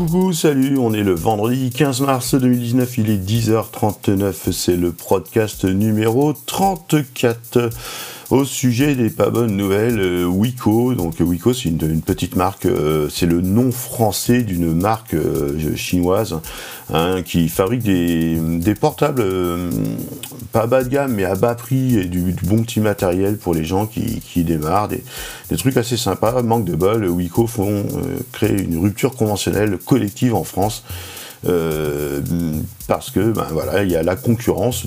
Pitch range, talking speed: 85-120 Hz, 160 wpm